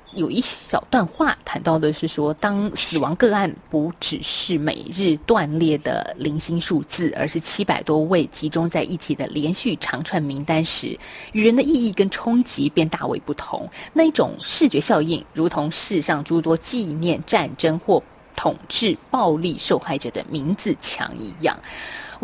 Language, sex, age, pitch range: Chinese, female, 20-39, 155-210 Hz